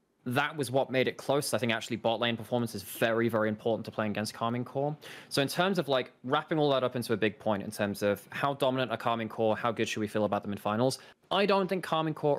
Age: 20-39